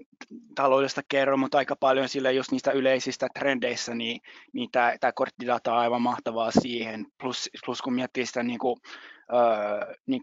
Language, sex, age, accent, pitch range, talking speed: Finnish, male, 20-39, native, 120-135 Hz, 160 wpm